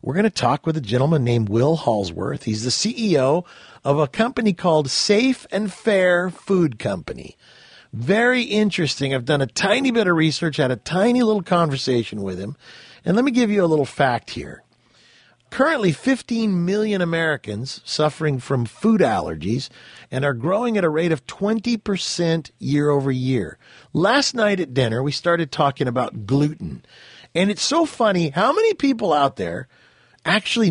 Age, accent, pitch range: 50-69, American, 135-210 Hz